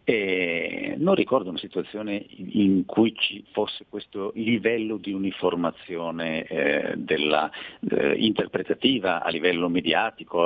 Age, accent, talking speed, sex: 50-69, native, 115 wpm, male